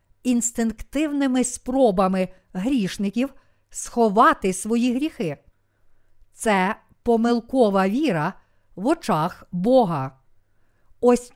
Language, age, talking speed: Ukrainian, 50-69, 70 wpm